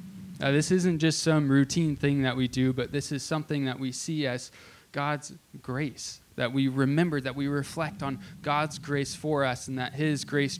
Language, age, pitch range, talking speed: English, 20-39, 125-155 Hz, 200 wpm